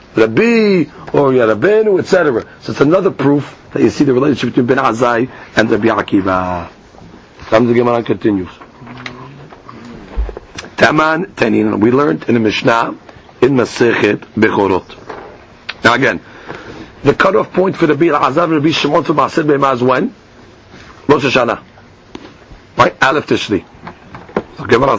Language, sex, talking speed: English, male, 135 wpm